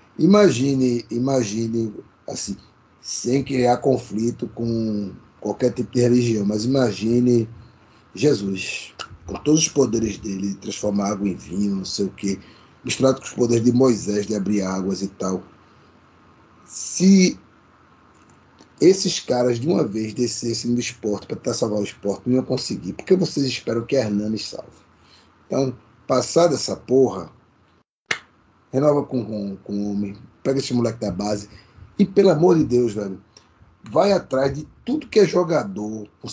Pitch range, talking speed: 100-135 Hz, 150 wpm